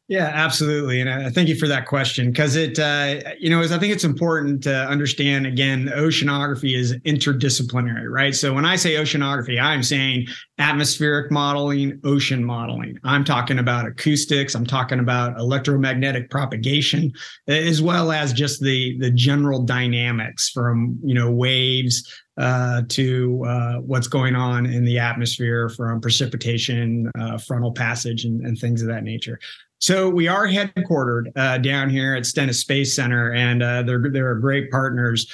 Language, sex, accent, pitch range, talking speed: English, male, American, 125-145 Hz, 160 wpm